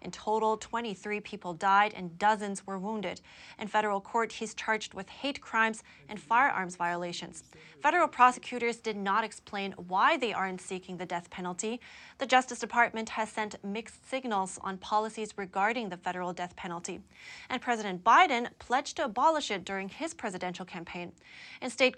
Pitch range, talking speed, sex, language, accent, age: 195-240 Hz, 160 wpm, female, English, American, 20-39